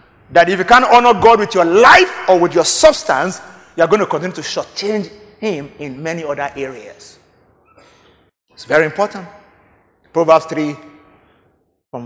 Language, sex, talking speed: English, male, 150 wpm